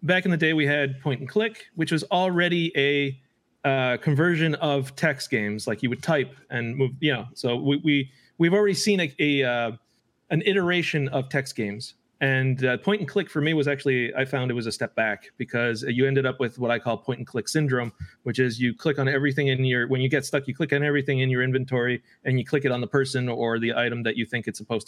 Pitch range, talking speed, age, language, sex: 120-150 Hz, 250 wpm, 30-49, English, male